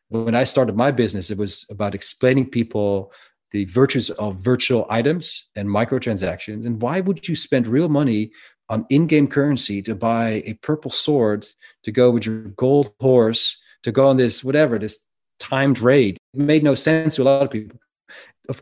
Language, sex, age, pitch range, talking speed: English, male, 40-59, 105-135 Hz, 180 wpm